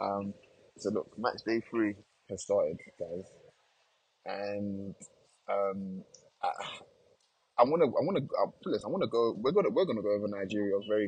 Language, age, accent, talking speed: English, 20-39, British, 180 wpm